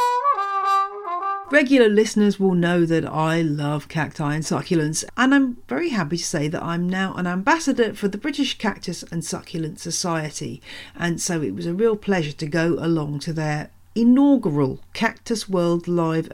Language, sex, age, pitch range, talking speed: English, female, 40-59, 165-240 Hz, 160 wpm